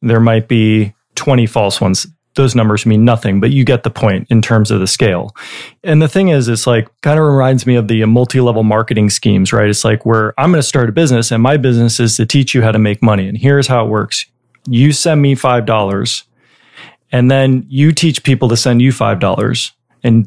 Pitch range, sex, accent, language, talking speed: 110-130 Hz, male, American, English, 220 wpm